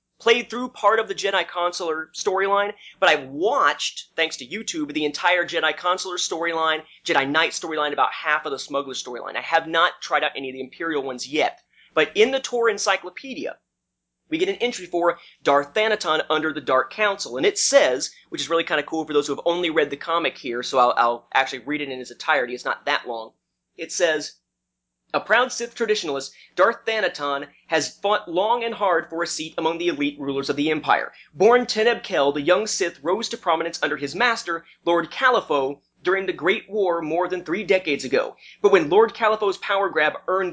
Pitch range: 155-210 Hz